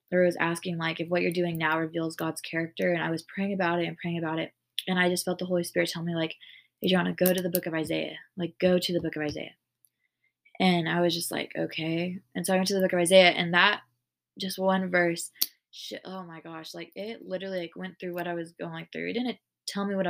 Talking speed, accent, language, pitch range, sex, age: 260 wpm, American, English, 165-190 Hz, female, 20-39